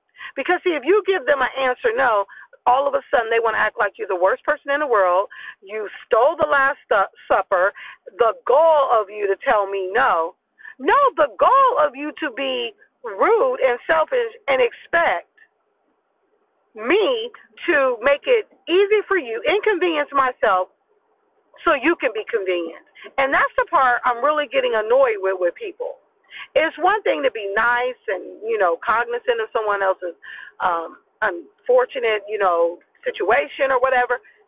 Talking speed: 165 wpm